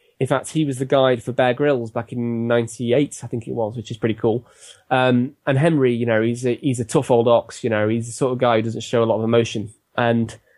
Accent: British